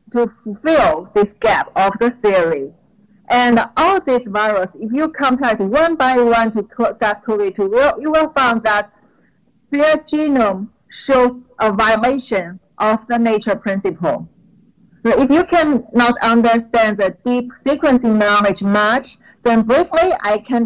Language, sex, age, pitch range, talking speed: English, female, 40-59, 205-250 Hz, 135 wpm